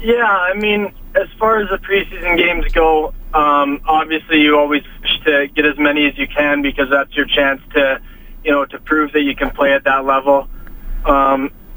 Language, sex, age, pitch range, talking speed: English, male, 20-39, 135-150 Hz, 200 wpm